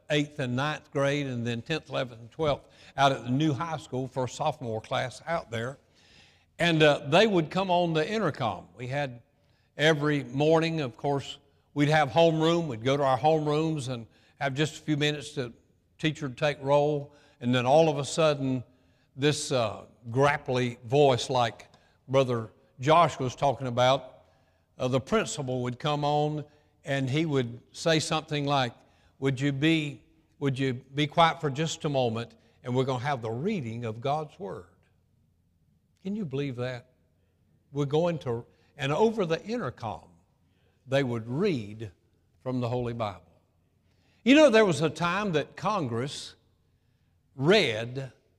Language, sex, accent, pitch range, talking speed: English, male, American, 115-155 Hz, 160 wpm